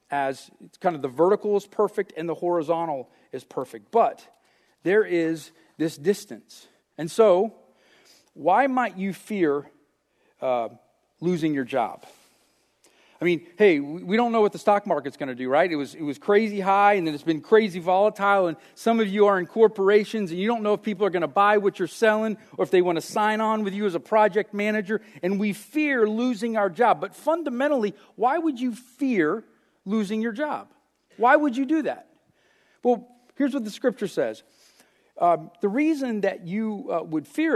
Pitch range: 170-220 Hz